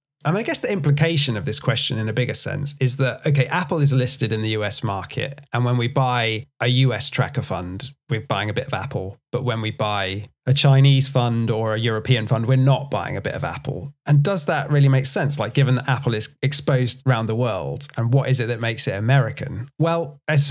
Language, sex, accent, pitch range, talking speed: English, male, British, 115-140 Hz, 230 wpm